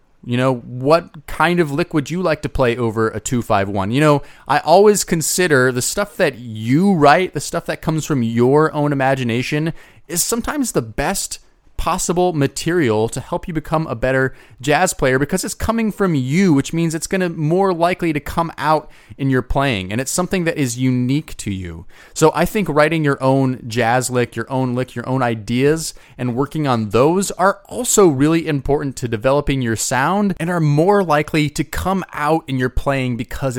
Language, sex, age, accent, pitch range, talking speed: English, male, 30-49, American, 130-190 Hz, 200 wpm